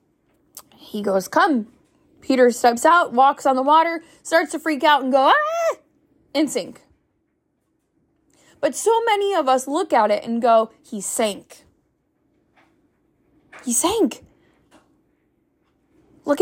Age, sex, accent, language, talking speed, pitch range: 20-39, female, American, English, 125 wpm, 250-320 Hz